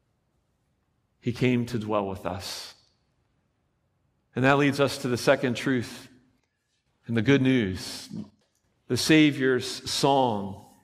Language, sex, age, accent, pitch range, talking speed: English, male, 40-59, American, 110-130 Hz, 115 wpm